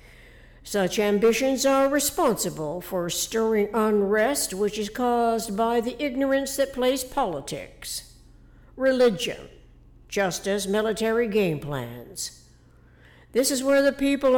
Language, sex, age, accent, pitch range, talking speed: English, female, 60-79, American, 195-255 Hz, 110 wpm